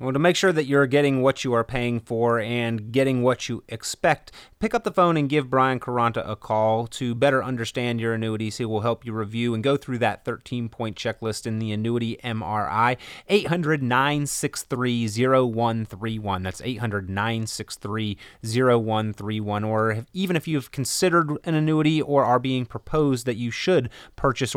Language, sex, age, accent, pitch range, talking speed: English, male, 30-49, American, 115-155 Hz, 160 wpm